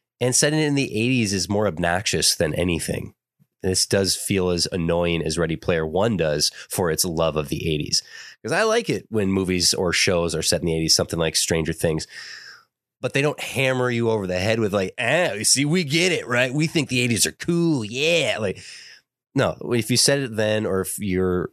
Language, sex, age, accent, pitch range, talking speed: English, male, 30-49, American, 85-120 Hz, 215 wpm